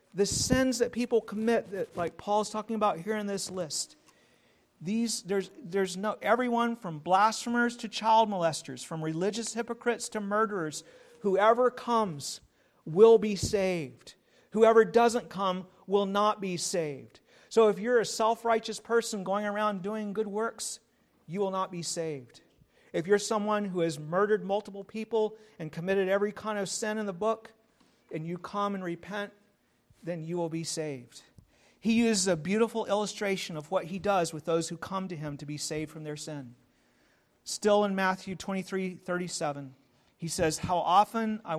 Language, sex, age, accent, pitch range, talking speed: English, male, 50-69, American, 165-215 Hz, 165 wpm